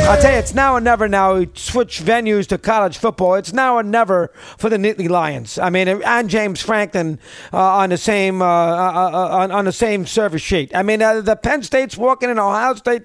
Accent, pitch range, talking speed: American, 190-235 Hz, 205 wpm